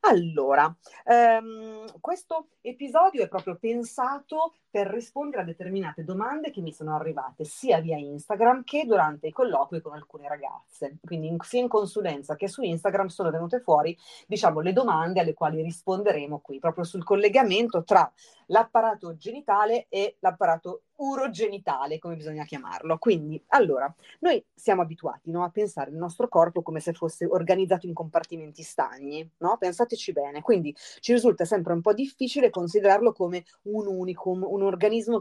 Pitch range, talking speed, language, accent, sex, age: 160-225 Hz, 150 wpm, Italian, native, female, 30-49